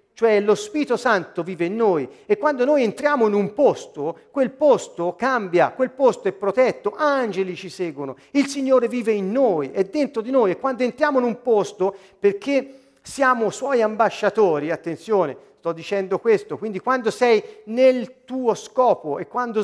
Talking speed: 170 wpm